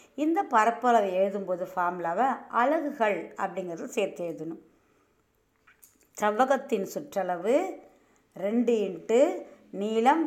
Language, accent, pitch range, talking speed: Tamil, native, 185-255 Hz, 75 wpm